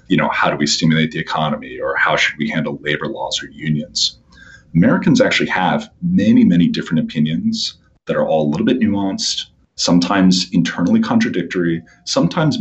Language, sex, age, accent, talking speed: English, male, 30-49, American, 165 wpm